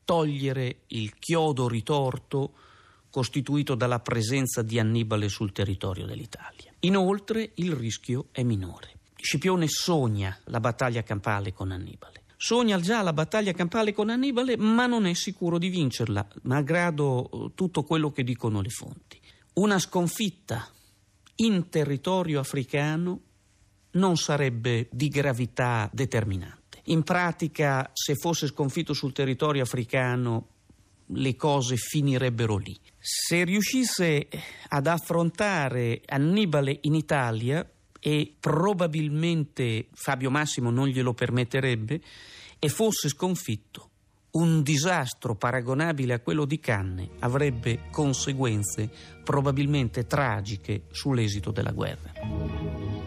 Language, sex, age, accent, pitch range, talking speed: Italian, male, 50-69, native, 115-160 Hz, 110 wpm